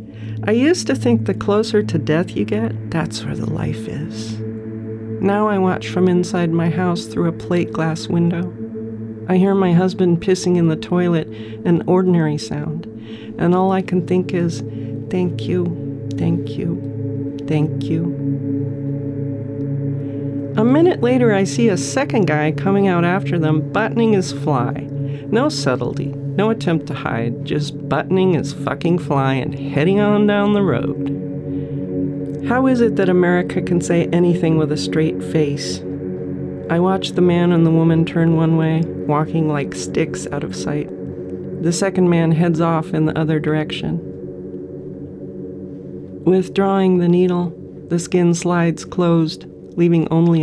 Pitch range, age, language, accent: 125-175 Hz, 50-69, English, American